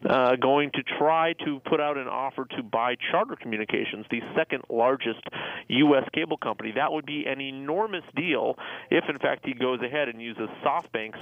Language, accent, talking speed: English, American, 180 wpm